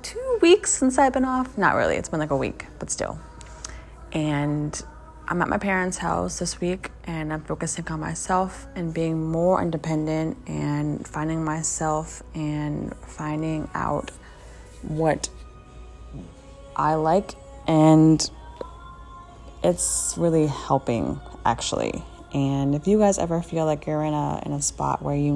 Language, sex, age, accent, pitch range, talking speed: English, female, 20-39, American, 140-175 Hz, 140 wpm